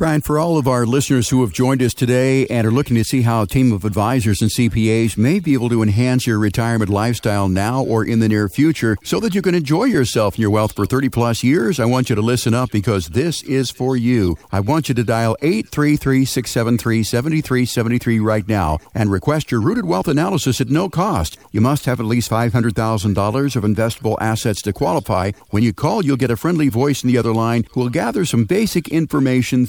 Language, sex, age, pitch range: English, male, 50-69, 110-135 Hz